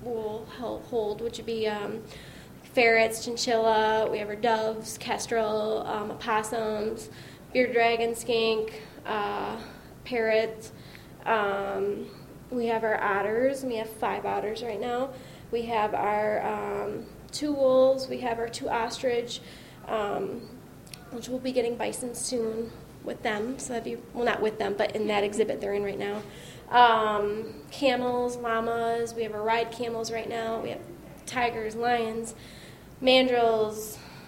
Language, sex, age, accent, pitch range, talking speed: English, female, 20-39, American, 215-235 Hz, 140 wpm